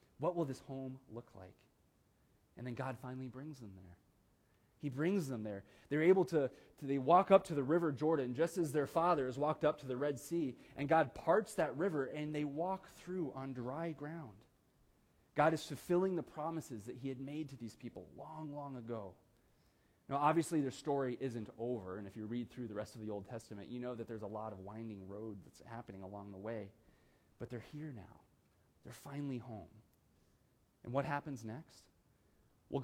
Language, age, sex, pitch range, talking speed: English, 30-49, male, 115-155 Hz, 195 wpm